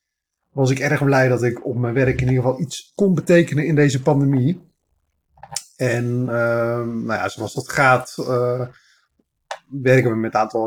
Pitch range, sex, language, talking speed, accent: 115-135 Hz, male, Dutch, 175 wpm, Dutch